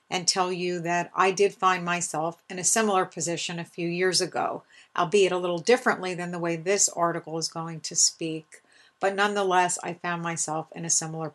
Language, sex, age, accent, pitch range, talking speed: English, female, 50-69, American, 175-215 Hz, 195 wpm